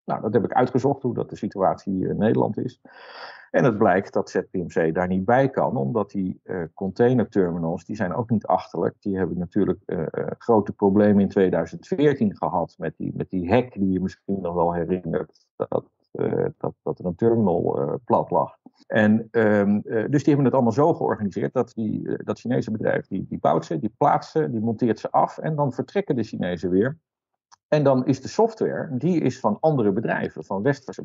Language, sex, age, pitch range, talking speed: Dutch, male, 50-69, 95-125 Hz, 205 wpm